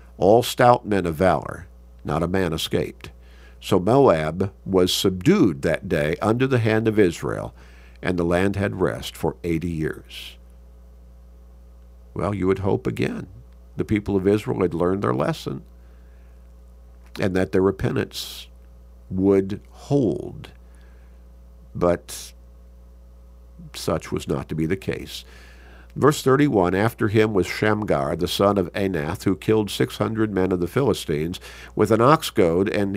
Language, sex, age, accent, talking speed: English, male, 50-69, American, 140 wpm